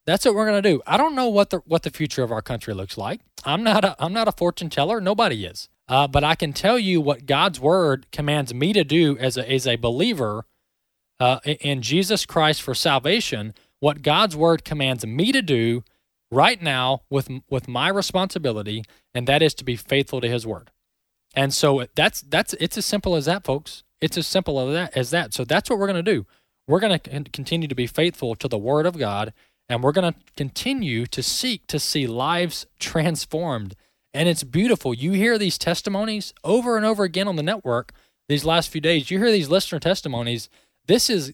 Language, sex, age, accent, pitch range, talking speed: English, male, 20-39, American, 130-185 Hz, 210 wpm